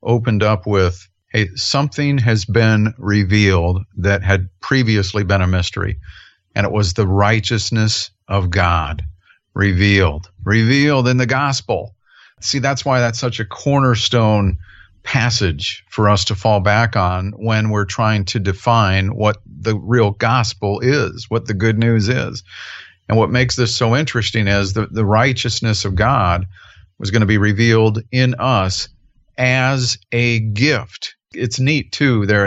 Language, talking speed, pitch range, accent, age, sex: English, 150 wpm, 100-120 Hz, American, 50-69, male